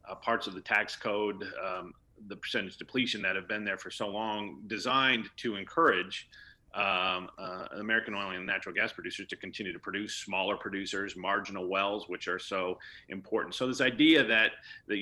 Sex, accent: male, American